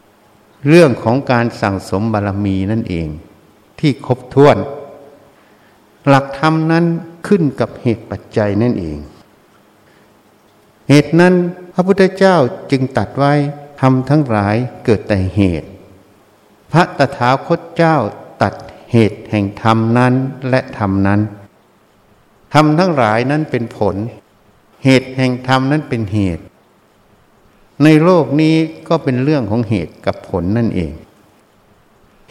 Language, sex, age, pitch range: Thai, male, 60-79, 105-140 Hz